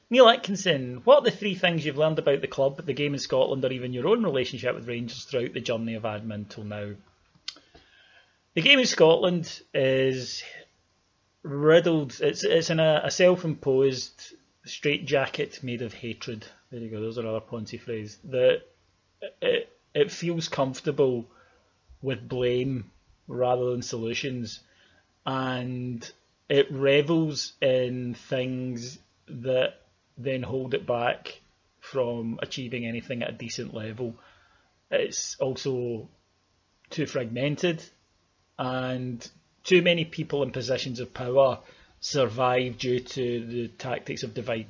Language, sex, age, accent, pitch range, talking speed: English, male, 30-49, British, 115-140 Hz, 135 wpm